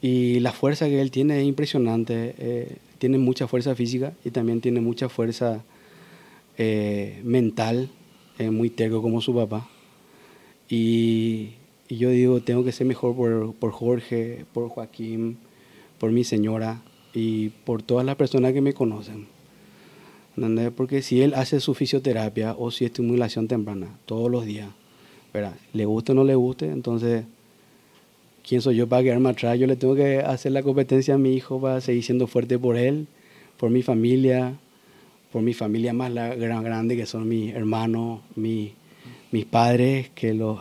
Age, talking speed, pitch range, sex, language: 30-49, 165 wpm, 115-130 Hz, male, Spanish